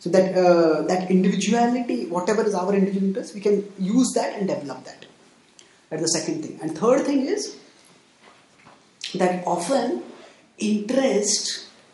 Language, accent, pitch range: English, Indian, 185-235 Hz